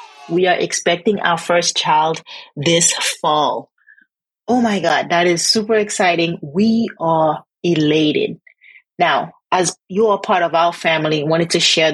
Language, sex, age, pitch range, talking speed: English, female, 30-49, 155-205 Hz, 145 wpm